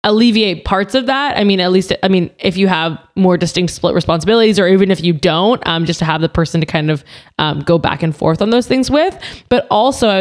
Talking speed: 255 wpm